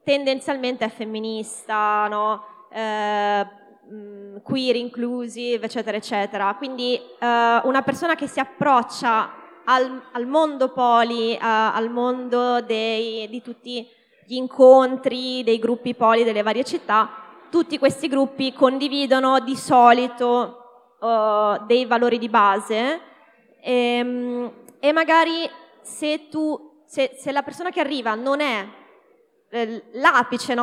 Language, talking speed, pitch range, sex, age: Italian, 110 wpm, 230-270 Hz, female, 20-39